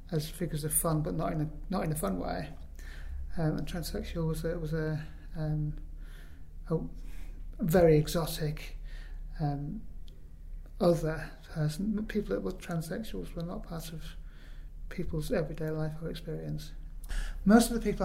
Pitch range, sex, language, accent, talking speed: 150-175 Hz, male, English, British, 145 wpm